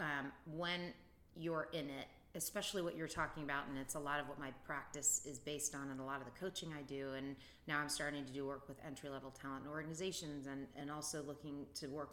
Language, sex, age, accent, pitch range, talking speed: English, female, 30-49, American, 140-165 Hz, 235 wpm